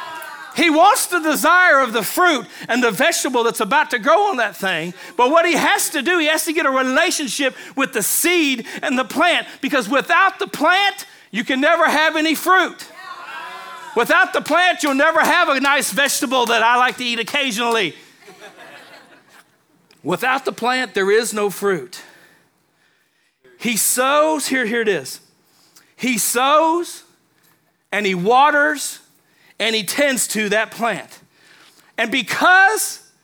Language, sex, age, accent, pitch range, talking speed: English, male, 40-59, American, 230-325 Hz, 155 wpm